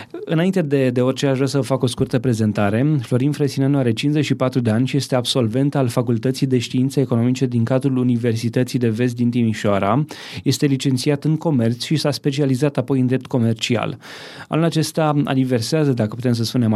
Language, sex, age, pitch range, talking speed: Romanian, male, 20-39, 120-145 Hz, 185 wpm